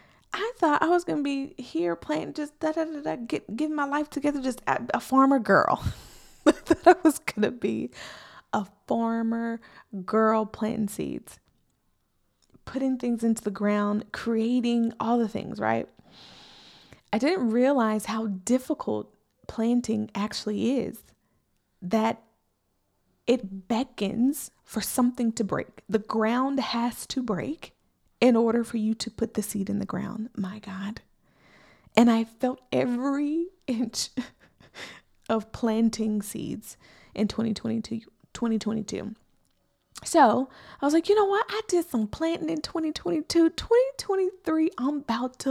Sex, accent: female, American